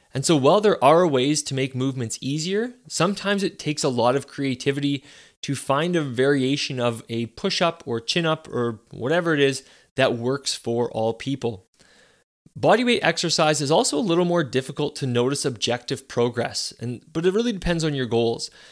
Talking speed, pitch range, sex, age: 175 wpm, 125-165 Hz, male, 20-39